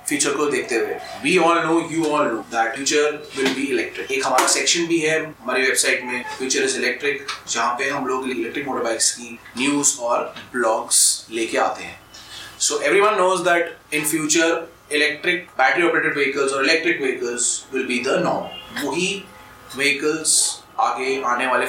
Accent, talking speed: native, 65 wpm